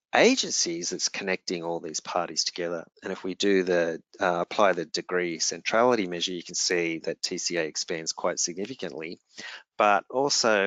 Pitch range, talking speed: 85-110 Hz, 160 wpm